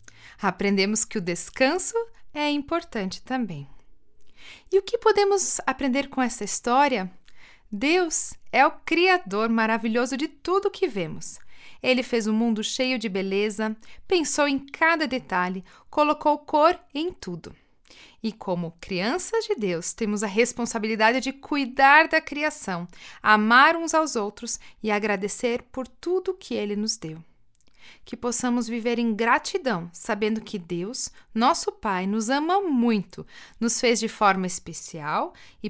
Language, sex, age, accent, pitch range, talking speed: Portuguese, female, 40-59, Brazilian, 210-295 Hz, 140 wpm